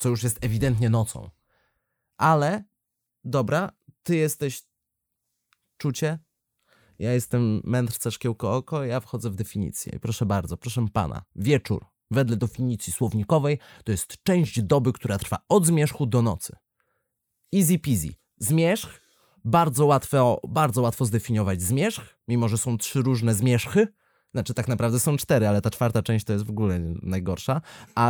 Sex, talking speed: male, 140 wpm